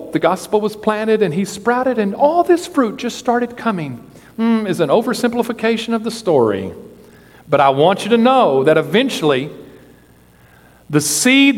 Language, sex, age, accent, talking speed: English, male, 50-69, American, 160 wpm